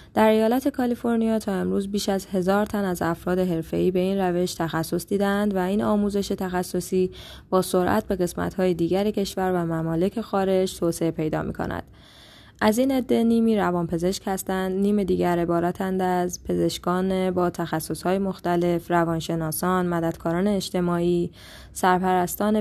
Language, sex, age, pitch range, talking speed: Persian, female, 10-29, 175-195 Hz, 145 wpm